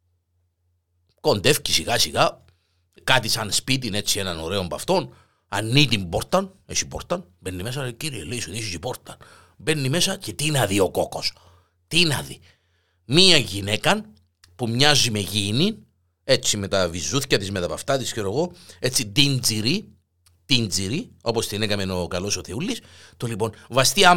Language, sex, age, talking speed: Greek, male, 50-69, 170 wpm